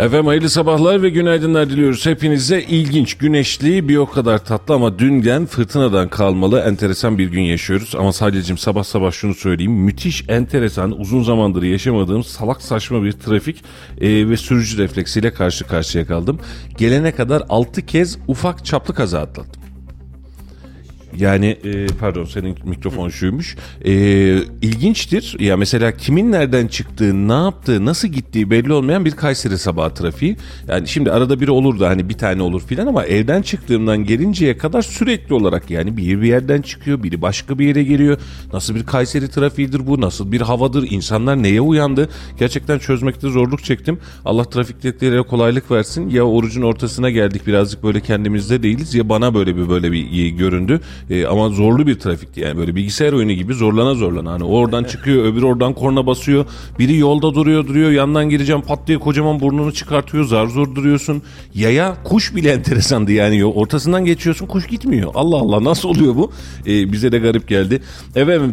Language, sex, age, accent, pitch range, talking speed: Turkish, male, 40-59, native, 100-145 Hz, 165 wpm